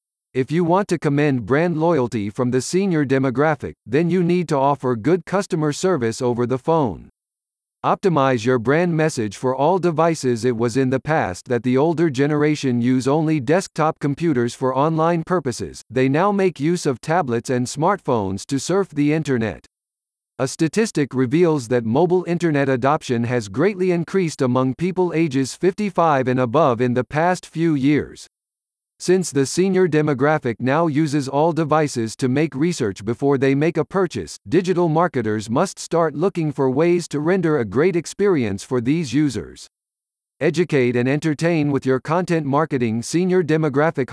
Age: 50-69